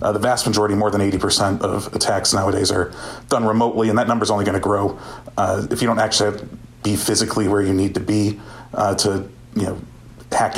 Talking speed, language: 220 wpm, English